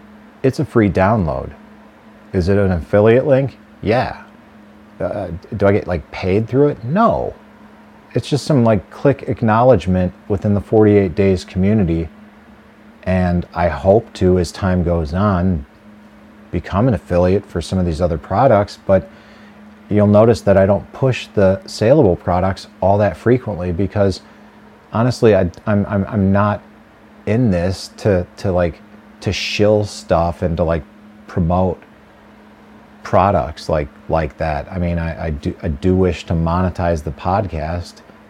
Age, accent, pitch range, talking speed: 40-59, American, 85-105 Hz, 145 wpm